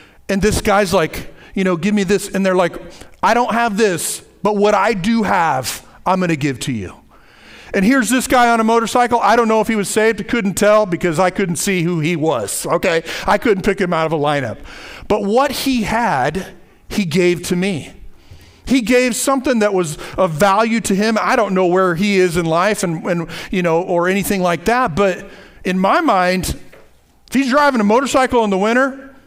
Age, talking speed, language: 40-59, 215 wpm, English